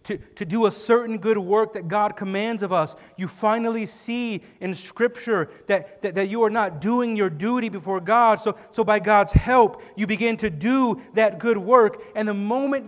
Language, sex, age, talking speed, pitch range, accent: English, male, 30-49, 200 wpm, 175-230 Hz, American